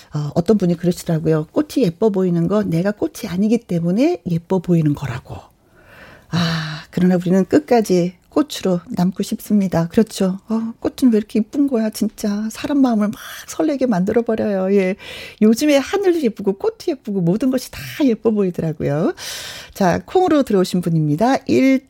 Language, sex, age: Korean, female, 40-59